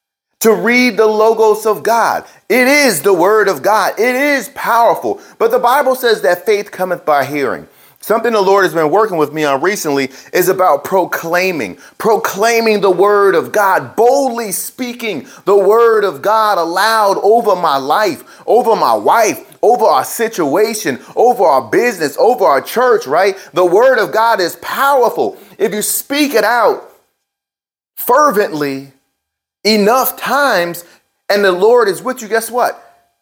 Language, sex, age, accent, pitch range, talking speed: English, male, 30-49, American, 185-235 Hz, 155 wpm